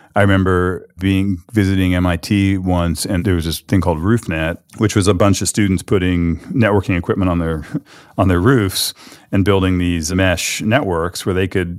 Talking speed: 180 wpm